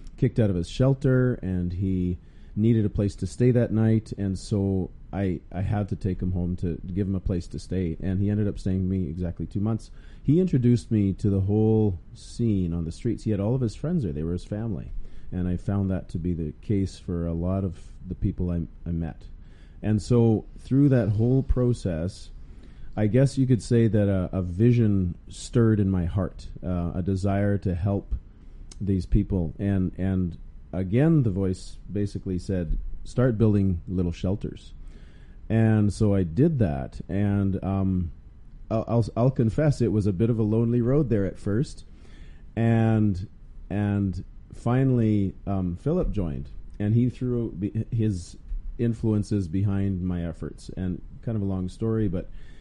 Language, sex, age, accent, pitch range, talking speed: English, male, 40-59, American, 90-110 Hz, 180 wpm